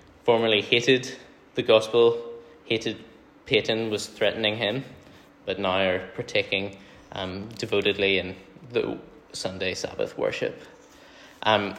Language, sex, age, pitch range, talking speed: English, male, 10-29, 100-125 Hz, 105 wpm